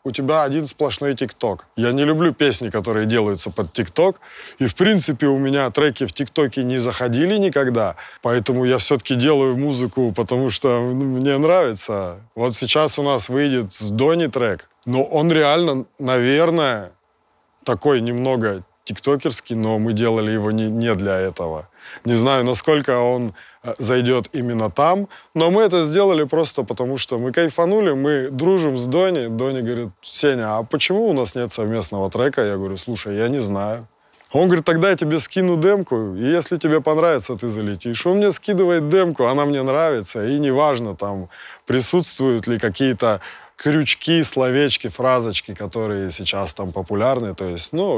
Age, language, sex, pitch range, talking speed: 20-39, Russian, male, 110-150 Hz, 160 wpm